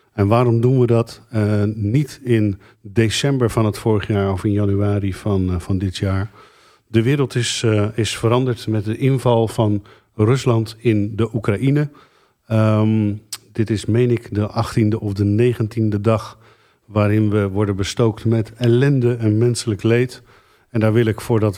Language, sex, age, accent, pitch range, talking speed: Dutch, male, 50-69, Dutch, 100-115 Hz, 165 wpm